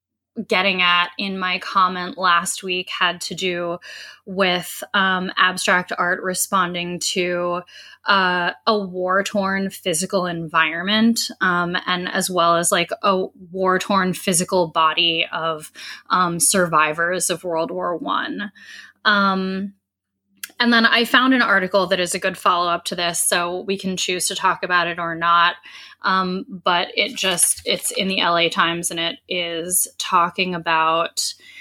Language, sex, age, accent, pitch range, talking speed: English, female, 10-29, American, 170-200 Hz, 145 wpm